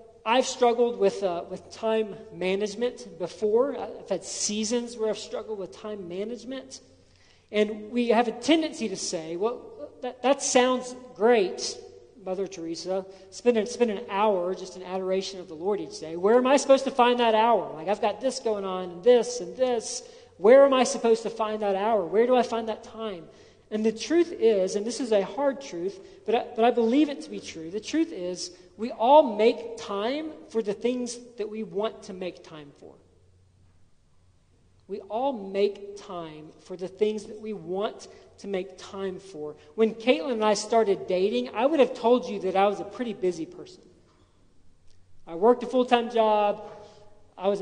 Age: 40-59